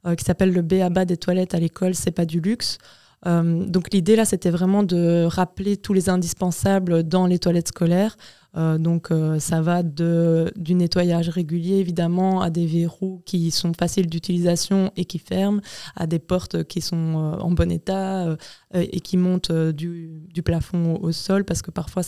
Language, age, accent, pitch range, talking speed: French, 20-39, French, 170-190 Hz, 180 wpm